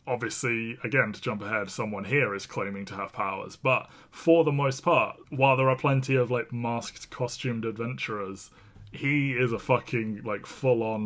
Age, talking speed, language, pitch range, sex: 20-39, 180 wpm, English, 105-125 Hz, male